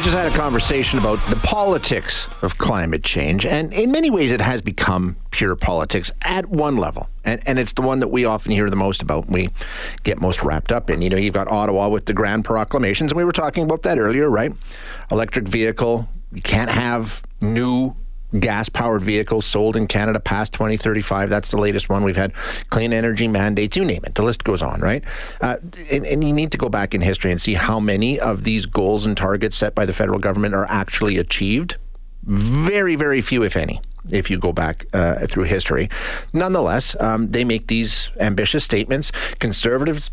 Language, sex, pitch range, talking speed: English, male, 105-135 Hz, 200 wpm